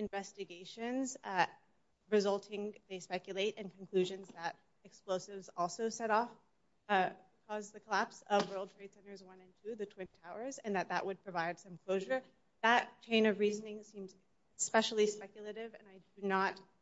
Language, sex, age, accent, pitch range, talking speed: English, female, 30-49, American, 190-215 Hz, 155 wpm